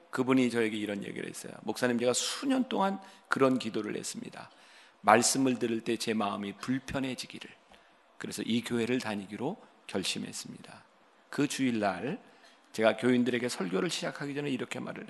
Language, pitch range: Korean, 115-170 Hz